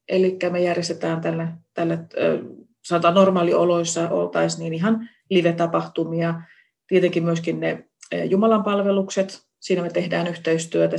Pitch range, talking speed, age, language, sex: 165-195 Hz, 100 wpm, 30-49, Finnish, female